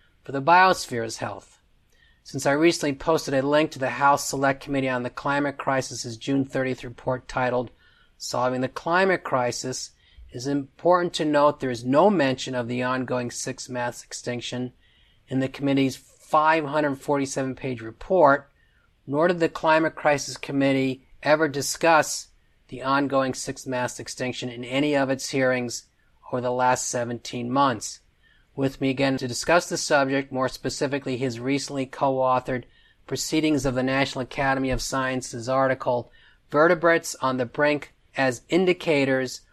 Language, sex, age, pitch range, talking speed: English, male, 40-59, 125-140 Hz, 145 wpm